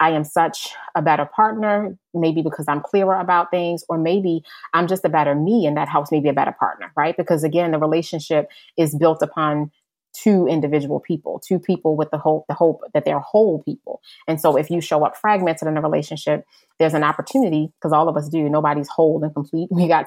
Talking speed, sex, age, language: 215 wpm, female, 30-49, English